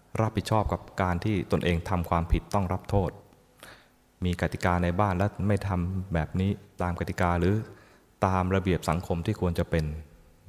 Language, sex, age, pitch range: Thai, male, 20-39, 85-100 Hz